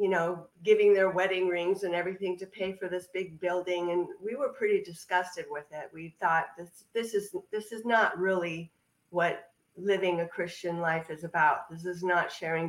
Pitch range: 170-195 Hz